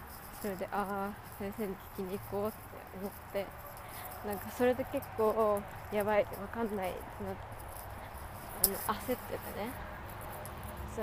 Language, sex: Japanese, female